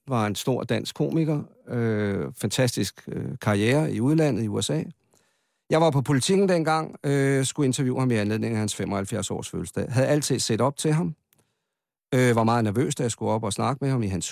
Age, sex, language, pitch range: 50-69, male, Danish, 115-150 Hz